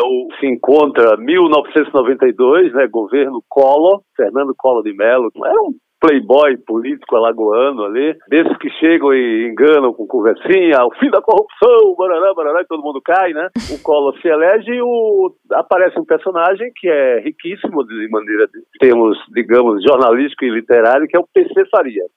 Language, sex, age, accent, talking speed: Portuguese, male, 50-69, Brazilian, 155 wpm